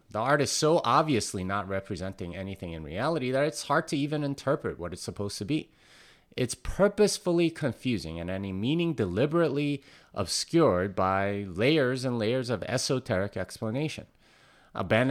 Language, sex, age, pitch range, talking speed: English, male, 30-49, 100-150 Hz, 145 wpm